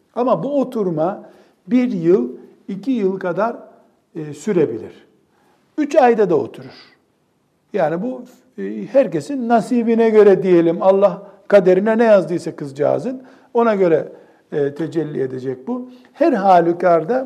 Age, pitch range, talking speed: 60-79, 180-250 Hz, 110 wpm